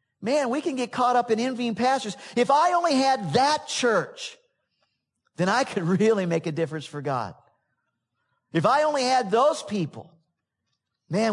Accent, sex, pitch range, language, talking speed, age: American, male, 160-230 Hz, English, 165 wpm, 50-69